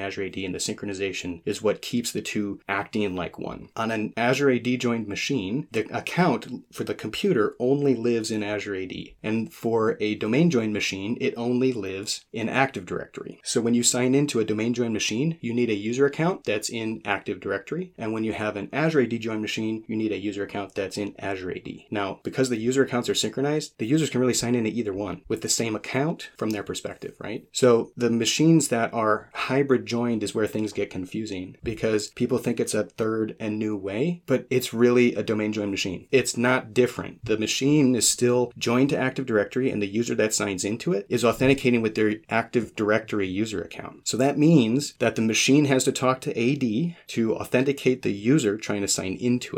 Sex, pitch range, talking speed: male, 105-125 Hz, 210 wpm